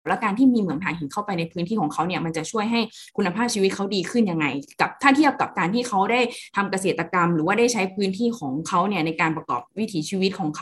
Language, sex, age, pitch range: Thai, female, 10-29, 165-210 Hz